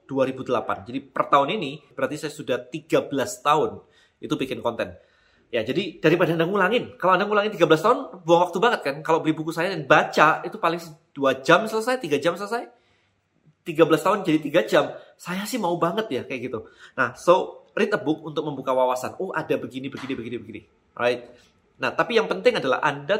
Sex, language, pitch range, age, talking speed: male, Indonesian, 135-175 Hz, 30-49, 190 wpm